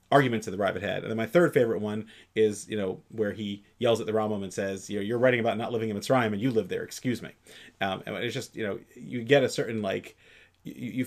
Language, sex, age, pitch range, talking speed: English, male, 30-49, 100-120 Hz, 265 wpm